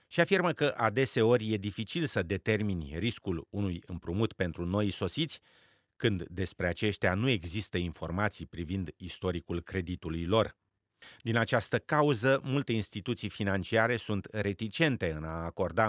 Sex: male